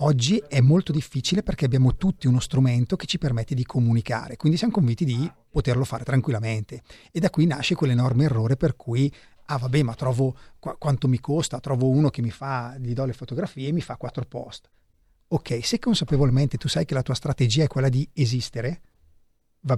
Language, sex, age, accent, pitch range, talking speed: Italian, male, 30-49, native, 120-150 Hz, 195 wpm